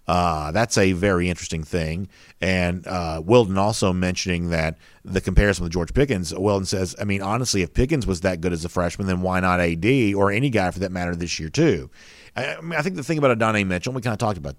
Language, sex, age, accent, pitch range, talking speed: English, male, 50-69, American, 85-105 Hz, 240 wpm